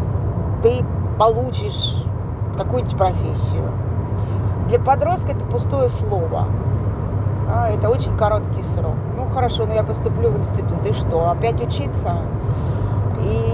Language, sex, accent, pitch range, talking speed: Russian, female, native, 100-115 Hz, 110 wpm